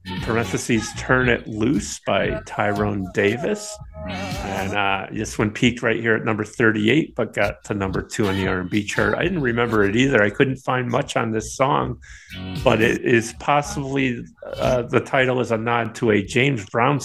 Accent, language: American, English